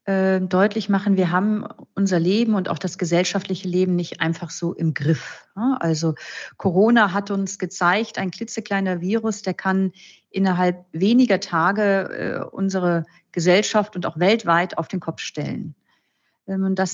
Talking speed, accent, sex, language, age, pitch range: 140 wpm, German, female, German, 40-59, 180-210 Hz